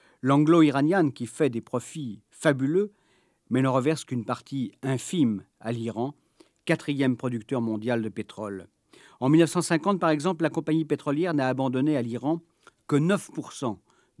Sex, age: male, 50-69